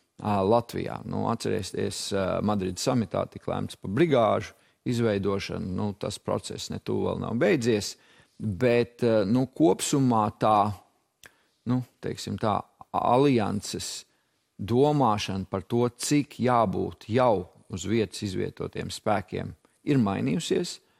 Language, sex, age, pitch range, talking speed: English, male, 50-69, 105-125 Hz, 105 wpm